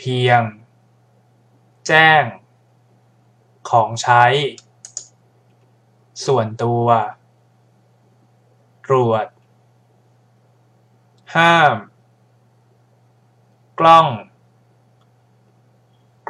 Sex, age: male, 20-39